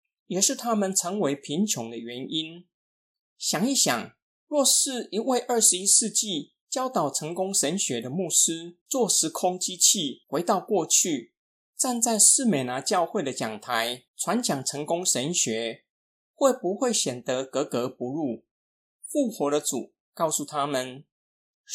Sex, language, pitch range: male, Chinese, 135-215 Hz